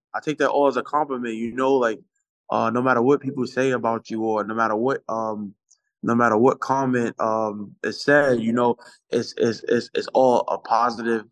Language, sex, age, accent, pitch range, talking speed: English, male, 20-39, American, 105-130 Hz, 205 wpm